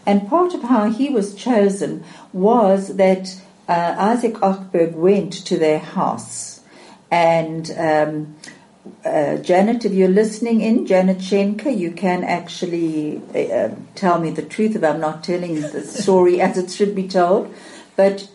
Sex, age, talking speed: female, 60-79, 150 wpm